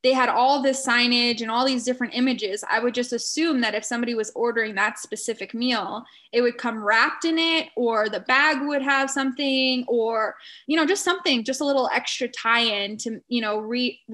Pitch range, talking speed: 225-275 Hz, 205 wpm